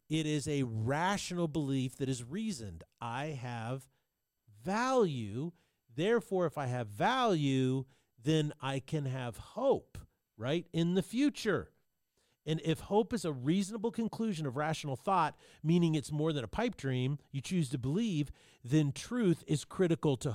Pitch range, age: 135-175 Hz, 40-59